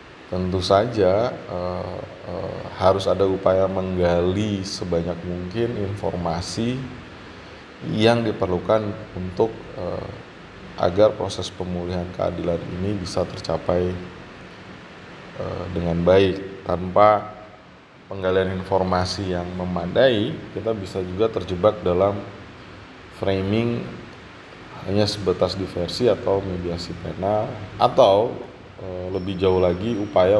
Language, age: Indonesian, 20-39